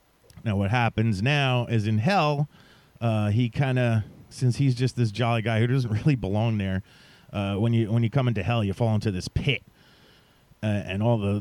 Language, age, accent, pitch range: English, 30-49, American, 100-120 Hz